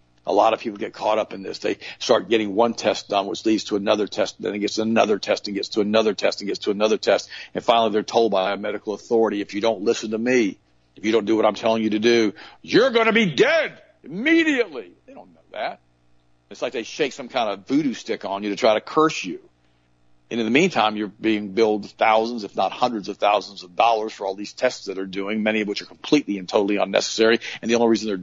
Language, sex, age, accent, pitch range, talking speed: English, male, 50-69, American, 100-120 Hz, 255 wpm